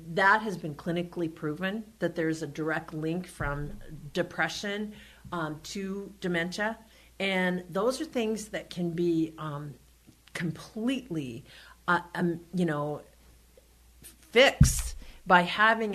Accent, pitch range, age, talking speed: American, 165-200 Hz, 50-69, 115 wpm